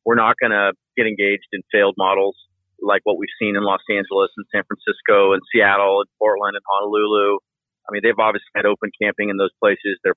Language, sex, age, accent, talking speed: English, male, 40-59, American, 210 wpm